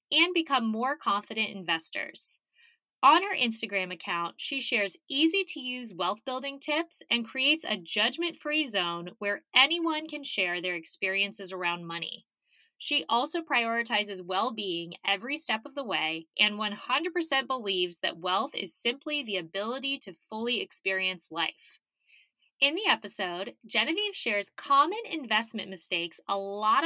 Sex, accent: female, American